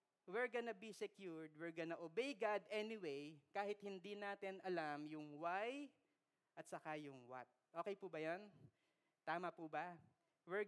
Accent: native